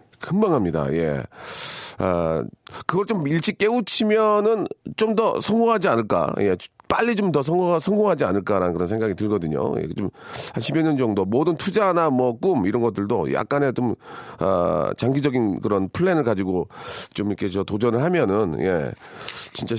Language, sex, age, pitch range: Korean, male, 40-59, 100-160 Hz